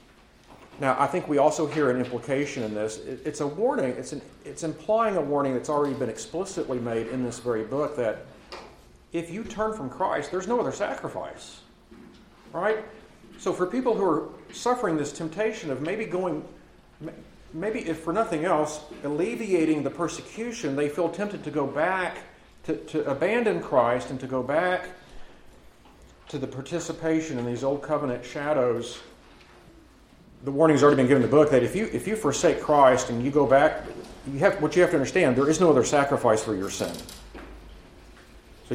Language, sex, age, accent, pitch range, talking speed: English, male, 50-69, American, 135-175 Hz, 180 wpm